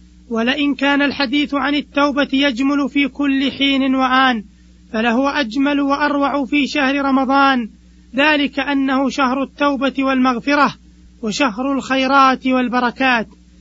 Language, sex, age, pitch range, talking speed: Arabic, male, 20-39, 240-270 Hz, 105 wpm